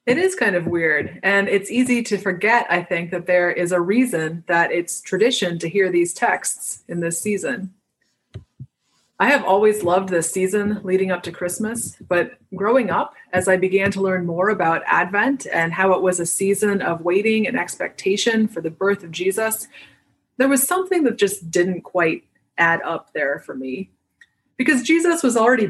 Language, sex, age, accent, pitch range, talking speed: English, female, 30-49, American, 175-220 Hz, 185 wpm